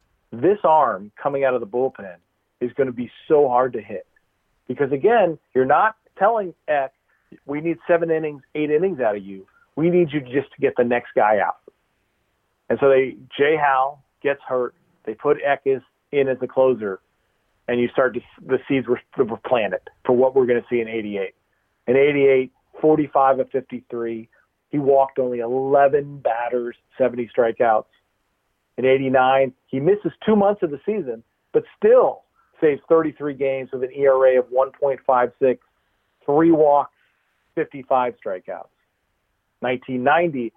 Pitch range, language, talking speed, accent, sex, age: 120-150 Hz, English, 160 wpm, American, male, 40-59